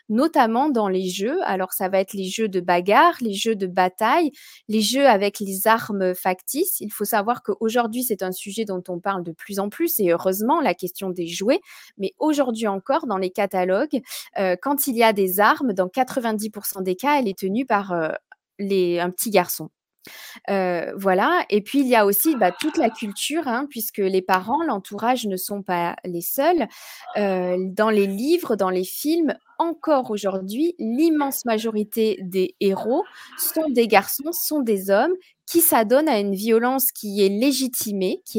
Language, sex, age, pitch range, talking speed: French, female, 20-39, 195-270 Hz, 180 wpm